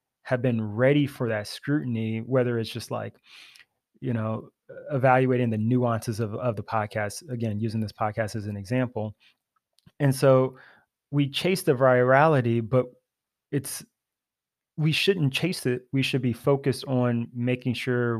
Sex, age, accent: male, 20-39, American